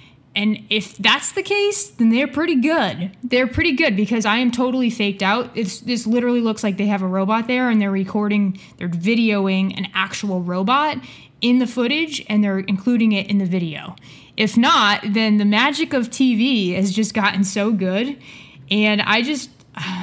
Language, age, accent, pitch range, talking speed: English, 20-39, American, 195-240 Hz, 180 wpm